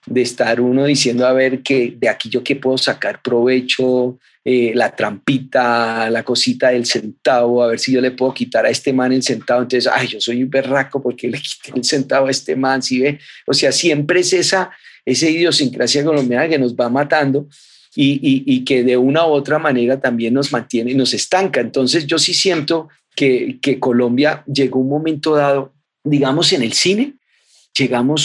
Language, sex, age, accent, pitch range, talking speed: Spanish, male, 40-59, Colombian, 125-145 Hz, 200 wpm